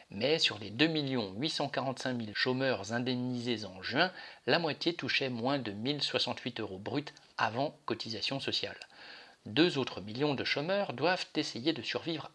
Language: French